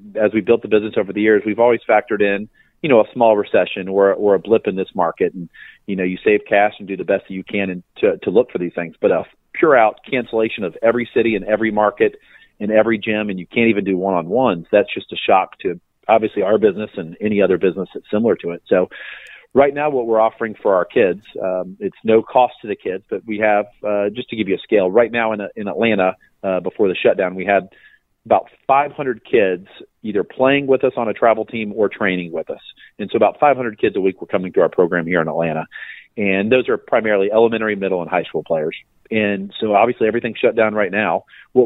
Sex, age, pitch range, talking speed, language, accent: male, 40-59, 100-115 Hz, 240 wpm, English, American